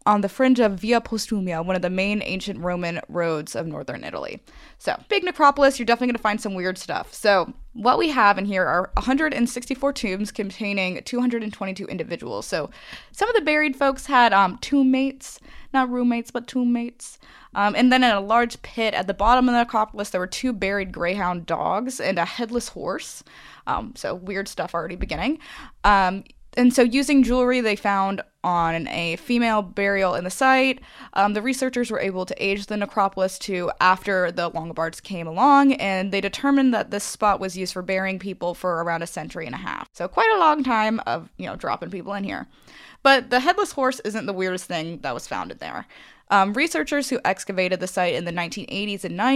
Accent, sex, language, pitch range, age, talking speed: American, female, English, 185-250 Hz, 20-39, 200 wpm